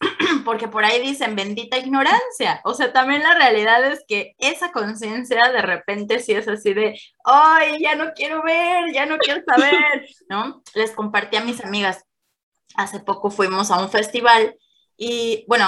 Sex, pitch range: female, 220-295 Hz